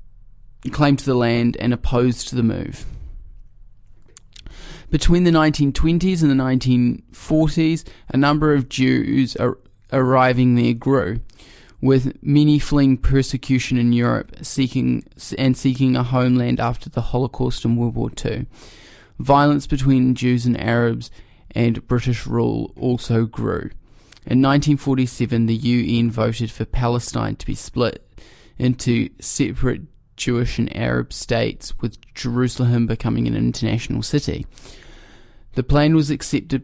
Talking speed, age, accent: 125 wpm, 20-39, Australian